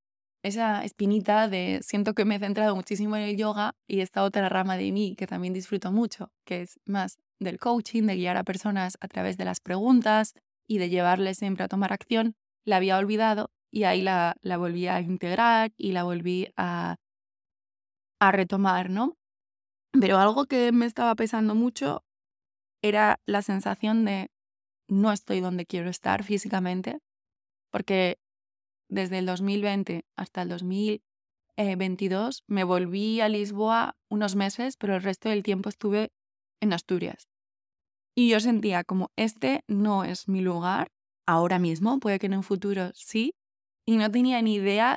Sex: female